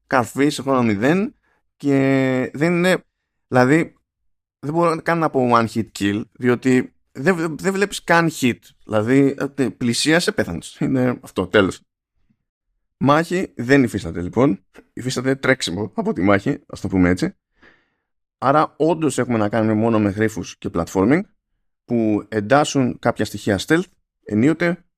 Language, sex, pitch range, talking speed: Greek, male, 105-145 Hz, 140 wpm